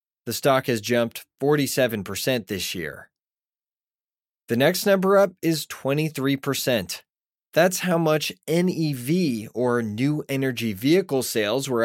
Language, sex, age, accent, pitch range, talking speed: English, male, 20-39, American, 110-150 Hz, 115 wpm